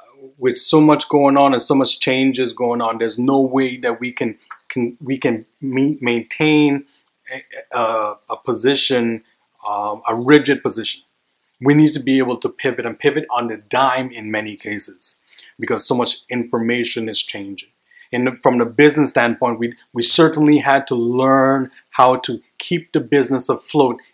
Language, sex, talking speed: English, male, 165 wpm